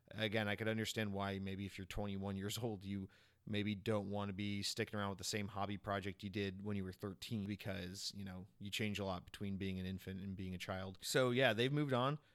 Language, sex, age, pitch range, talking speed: English, male, 30-49, 100-115 Hz, 245 wpm